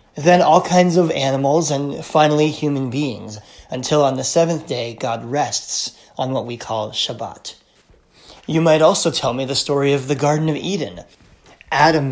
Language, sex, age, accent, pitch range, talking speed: English, male, 30-49, American, 130-160 Hz, 170 wpm